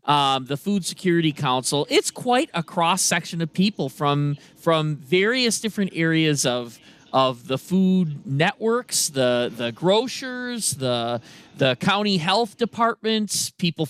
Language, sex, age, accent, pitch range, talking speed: English, male, 40-59, American, 145-215 Hz, 125 wpm